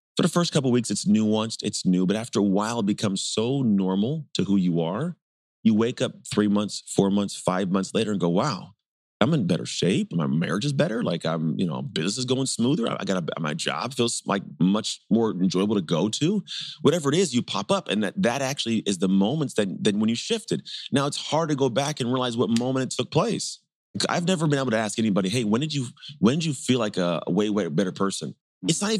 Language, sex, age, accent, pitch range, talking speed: English, male, 30-49, American, 100-145 Hz, 245 wpm